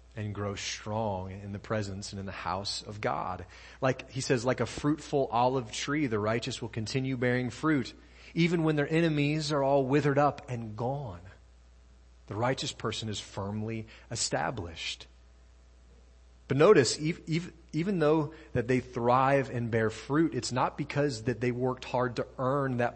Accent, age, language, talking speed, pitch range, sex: American, 30-49, English, 160 wpm, 85-125 Hz, male